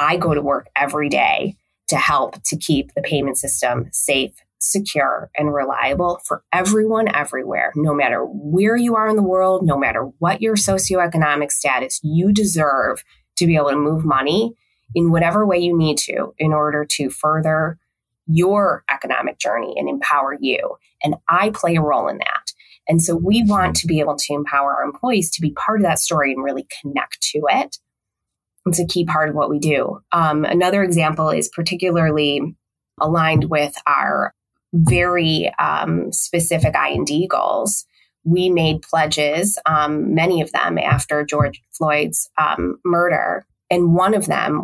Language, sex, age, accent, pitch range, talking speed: English, female, 20-39, American, 145-175 Hz, 165 wpm